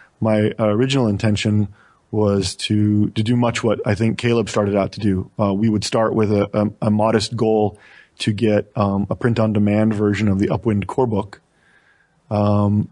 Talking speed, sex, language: 180 wpm, male, English